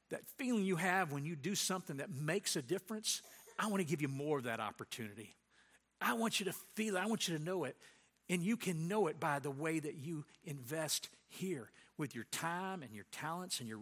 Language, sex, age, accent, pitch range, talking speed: English, male, 50-69, American, 135-185 Hz, 230 wpm